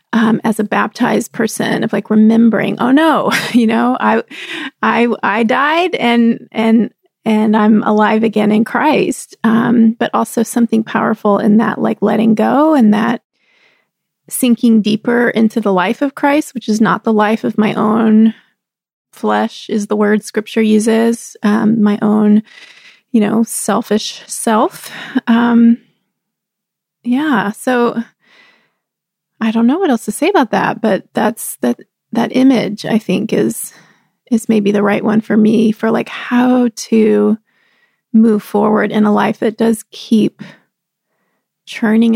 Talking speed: 150 wpm